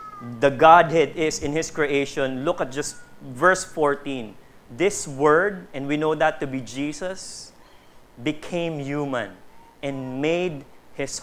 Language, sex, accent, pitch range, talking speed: English, male, Filipino, 140-190 Hz, 135 wpm